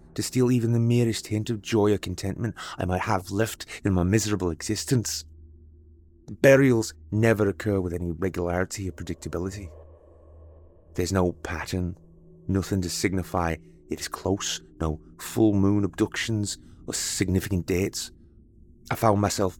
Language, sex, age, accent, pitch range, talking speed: English, male, 30-49, British, 85-105 Hz, 140 wpm